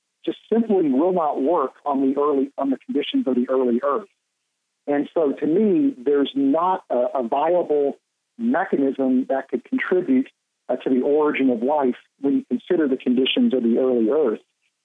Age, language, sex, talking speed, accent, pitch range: 50-69, English, male, 175 wpm, American, 130-180 Hz